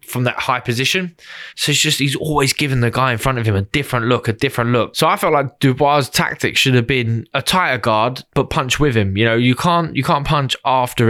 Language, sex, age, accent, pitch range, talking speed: English, male, 10-29, British, 115-145 Hz, 250 wpm